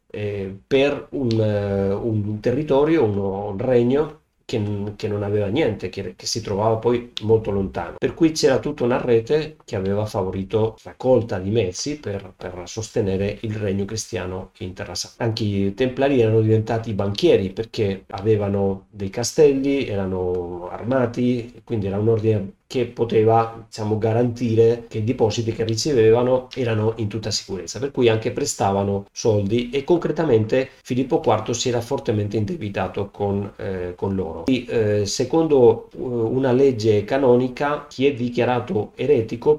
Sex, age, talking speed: male, 40-59, 145 wpm